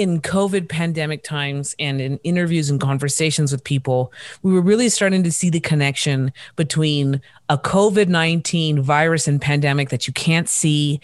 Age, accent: 30-49, American